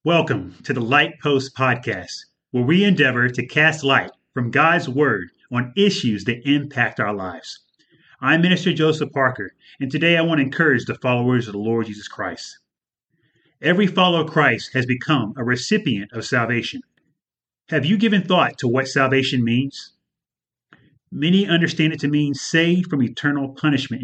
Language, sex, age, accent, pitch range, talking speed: English, male, 30-49, American, 120-155 Hz, 160 wpm